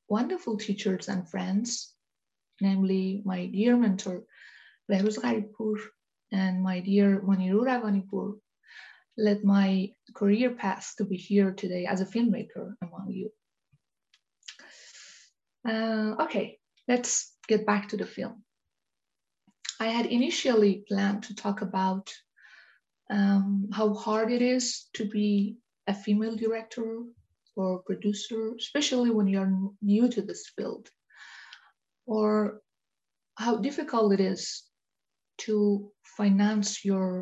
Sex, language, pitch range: female, English, 195-220 Hz